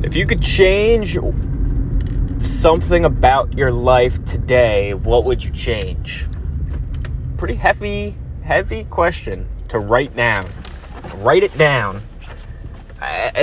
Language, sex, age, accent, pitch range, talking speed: English, male, 20-39, American, 80-120 Hz, 105 wpm